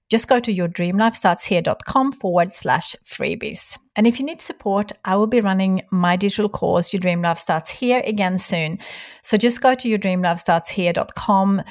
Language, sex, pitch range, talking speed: English, female, 170-215 Hz, 190 wpm